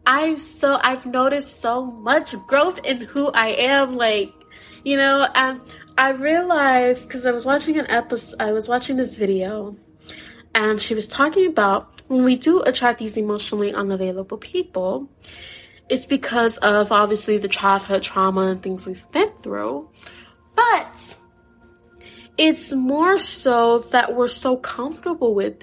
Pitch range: 205-265 Hz